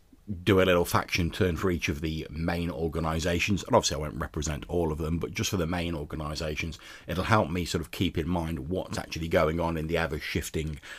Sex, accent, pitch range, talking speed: male, British, 80-95 Hz, 220 wpm